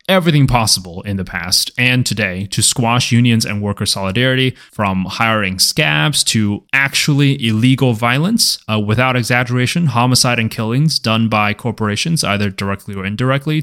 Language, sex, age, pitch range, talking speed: English, male, 20-39, 100-125 Hz, 145 wpm